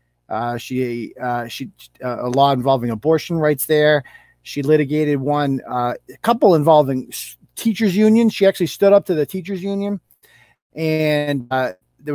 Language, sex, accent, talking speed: English, male, American, 155 wpm